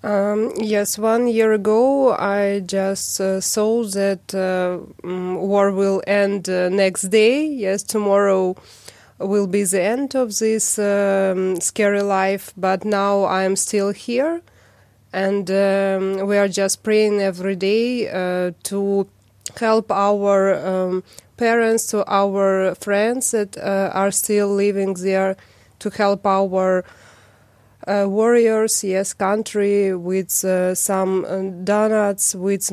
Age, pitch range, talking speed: 20-39, 190-215 Hz, 125 wpm